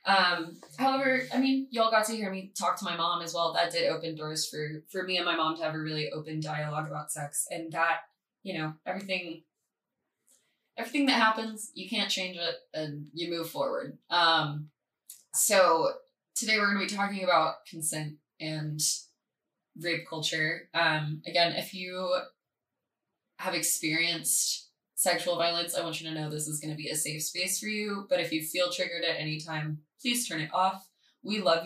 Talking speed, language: 190 wpm, English